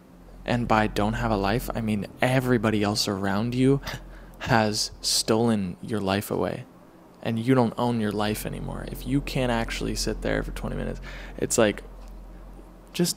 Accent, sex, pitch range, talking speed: American, male, 105-130 Hz, 165 wpm